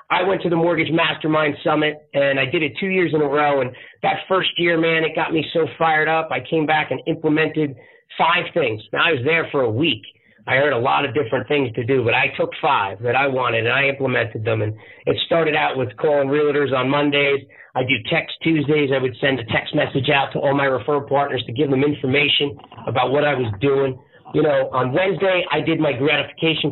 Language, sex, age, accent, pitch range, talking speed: English, male, 40-59, American, 135-155 Hz, 230 wpm